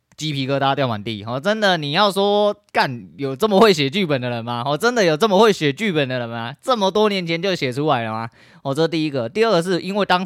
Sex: male